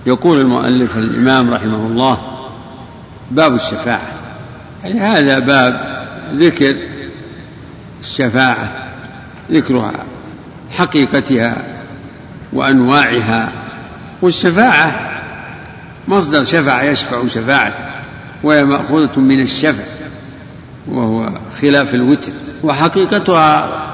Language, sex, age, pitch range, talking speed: Arabic, male, 60-79, 130-170 Hz, 70 wpm